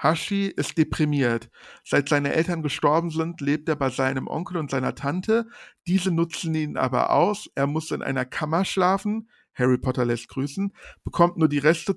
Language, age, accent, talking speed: German, 50-69, German, 175 wpm